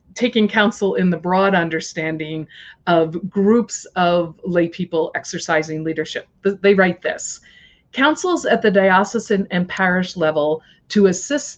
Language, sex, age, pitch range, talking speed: English, female, 50-69, 165-205 Hz, 130 wpm